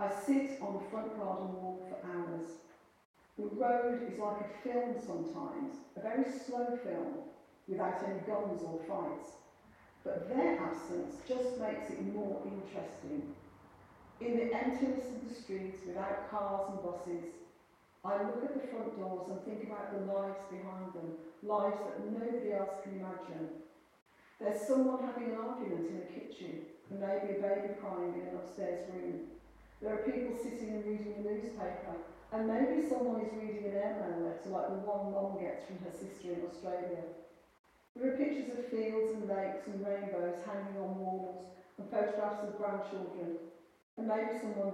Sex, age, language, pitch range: female, 50-69, English, 185-235 Hz